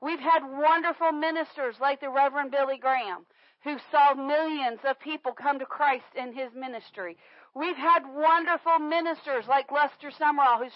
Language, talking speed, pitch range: English, 155 wpm, 275-335 Hz